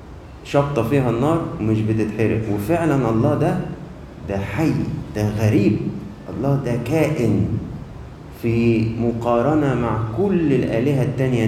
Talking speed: 110 wpm